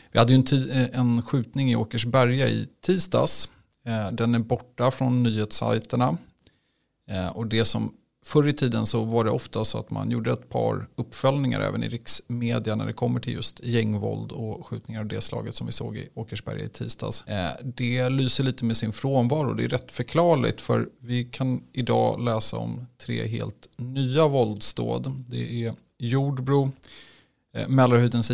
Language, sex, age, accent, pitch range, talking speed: Swedish, male, 30-49, native, 115-130 Hz, 165 wpm